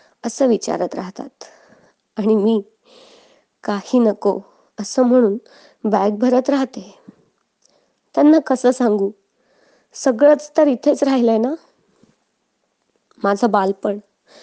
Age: 20-39